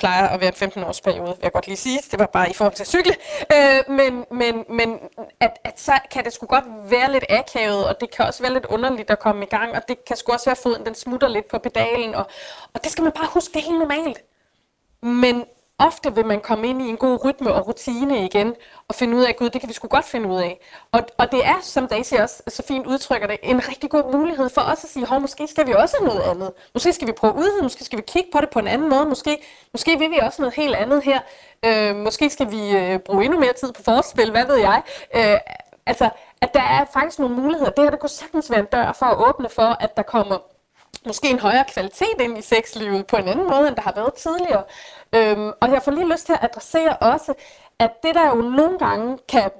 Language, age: Danish, 20-39